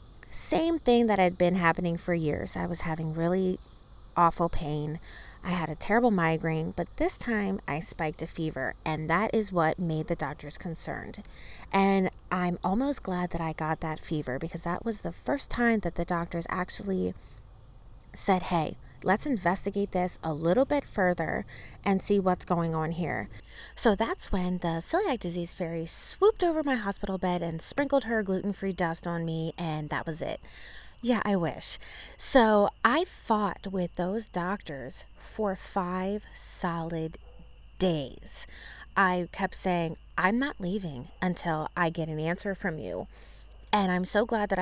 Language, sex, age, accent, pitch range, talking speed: English, female, 20-39, American, 165-200 Hz, 165 wpm